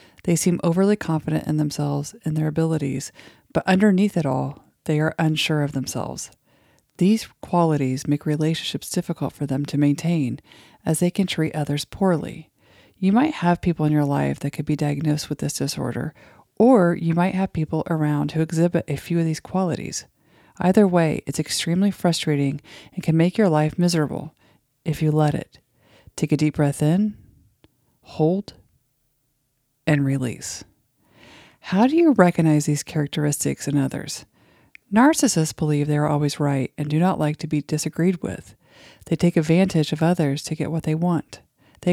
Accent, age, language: American, 40-59, English